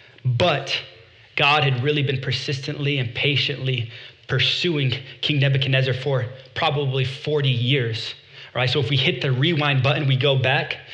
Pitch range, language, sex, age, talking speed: 130-145 Hz, English, male, 20-39, 150 wpm